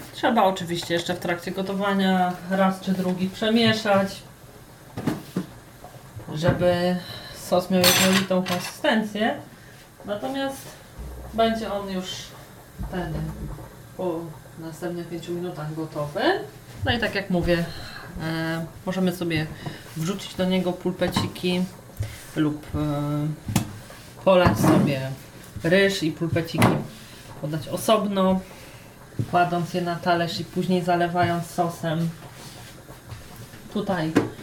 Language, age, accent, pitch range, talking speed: Polish, 30-49, native, 165-190 Hz, 90 wpm